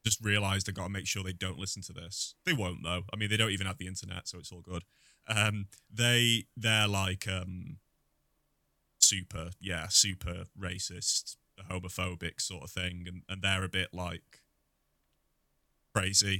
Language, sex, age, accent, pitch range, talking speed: English, male, 20-39, British, 95-105 Hz, 170 wpm